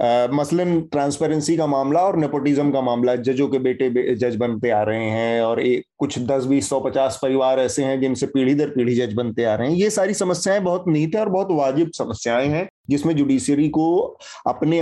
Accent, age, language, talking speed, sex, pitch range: native, 30-49, Hindi, 210 wpm, male, 130-180 Hz